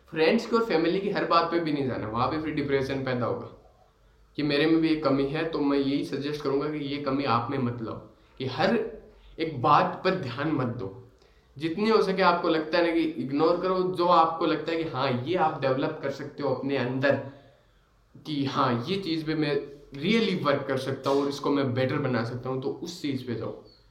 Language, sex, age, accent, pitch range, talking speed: Hindi, male, 20-39, native, 130-155 Hz, 225 wpm